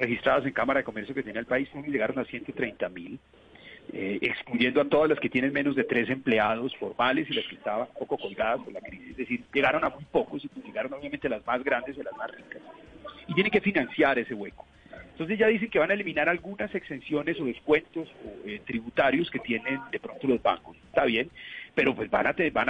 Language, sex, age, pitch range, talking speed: Spanish, male, 40-59, 135-220 Hz, 225 wpm